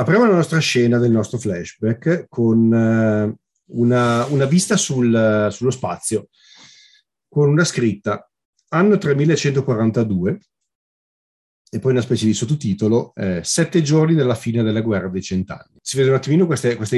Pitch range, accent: 100-130 Hz, native